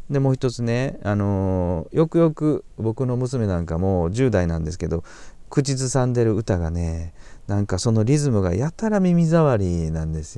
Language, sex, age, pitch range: Japanese, male, 40-59, 90-140 Hz